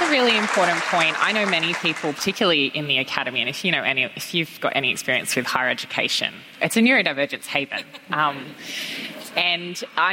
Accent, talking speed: Australian, 195 wpm